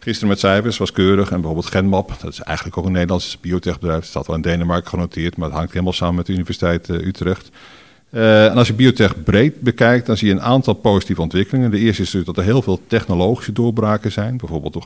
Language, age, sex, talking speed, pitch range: Dutch, 50-69, male, 235 wpm, 85-110 Hz